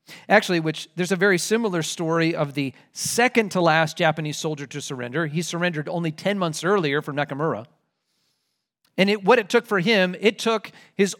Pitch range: 155-205 Hz